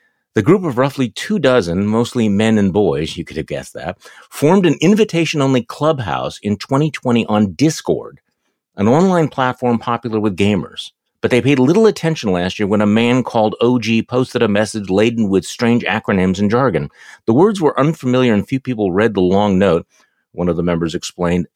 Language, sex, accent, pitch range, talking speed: English, male, American, 90-130 Hz, 185 wpm